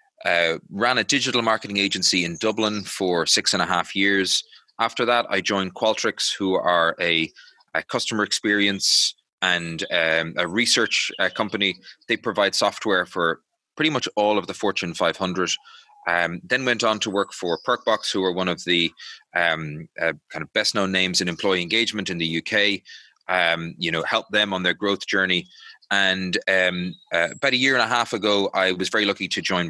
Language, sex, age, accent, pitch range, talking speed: English, male, 20-39, Irish, 90-110 Hz, 190 wpm